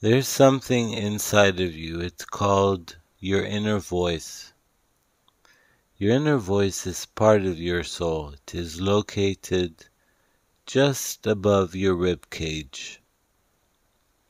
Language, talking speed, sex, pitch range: English, 110 wpm, male, 85-105 Hz